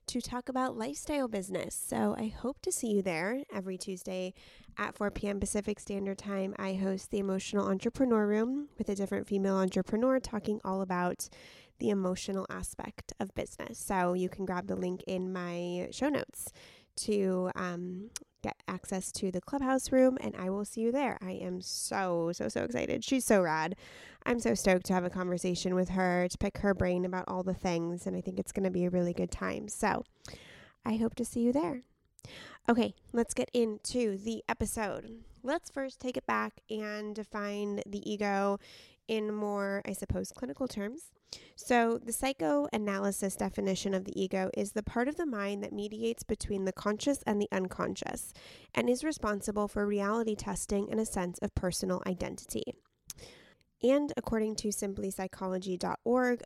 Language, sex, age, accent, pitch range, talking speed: English, female, 20-39, American, 185-230 Hz, 175 wpm